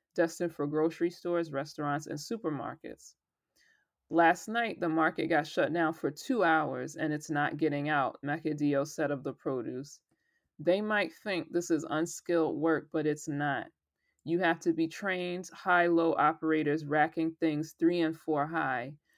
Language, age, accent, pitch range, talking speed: English, 20-39, American, 150-170 Hz, 155 wpm